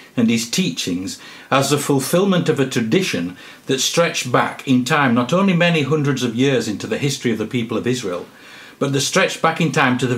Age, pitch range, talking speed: 60-79, 120-160 Hz, 210 wpm